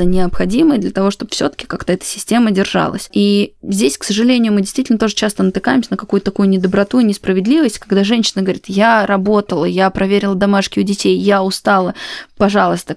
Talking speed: 175 wpm